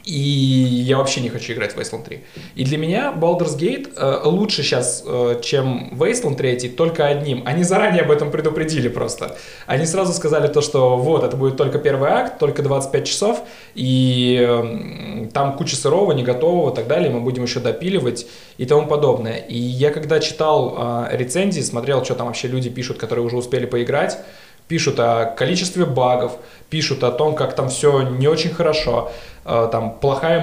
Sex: male